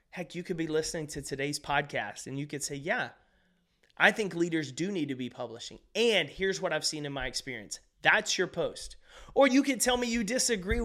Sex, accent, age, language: male, American, 30-49, English